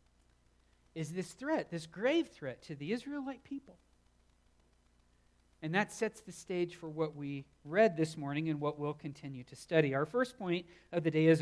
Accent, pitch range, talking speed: American, 150-230 Hz, 180 wpm